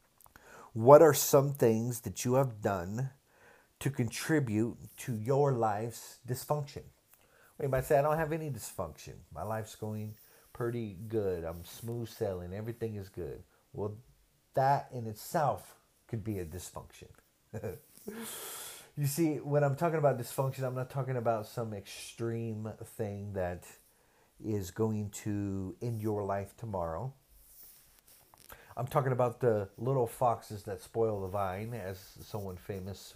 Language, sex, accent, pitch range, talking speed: English, male, American, 105-135 Hz, 140 wpm